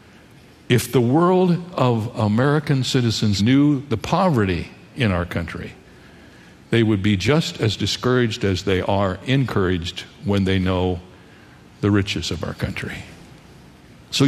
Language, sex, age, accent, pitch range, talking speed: English, male, 60-79, American, 100-130 Hz, 130 wpm